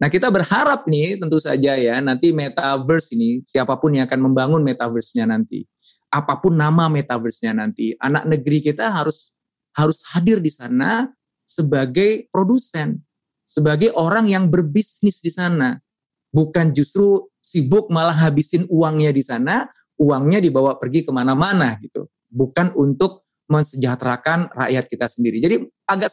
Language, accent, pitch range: Indonesian, native, 130-170 Hz